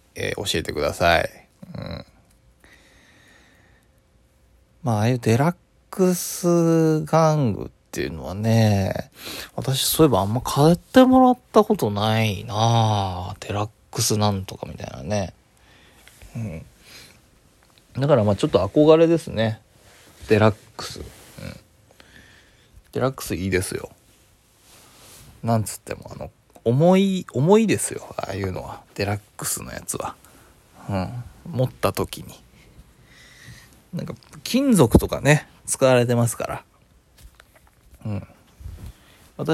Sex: male